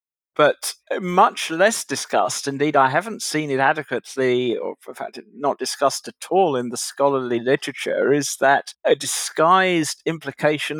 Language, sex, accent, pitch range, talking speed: English, male, British, 130-145 Hz, 145 wpm